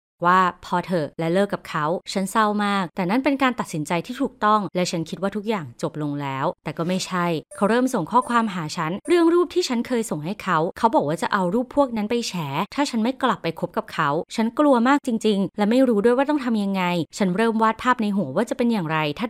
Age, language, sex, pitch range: 20-39, Thai, female, 175-240 Hz